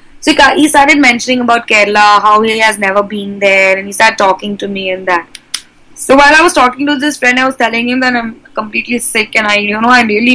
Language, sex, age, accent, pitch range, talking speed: English, female, 20-39, Indian, 215-265 Hz, 245 wpm